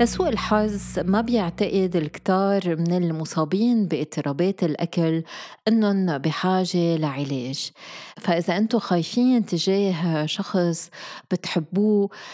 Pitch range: 170-215 Hz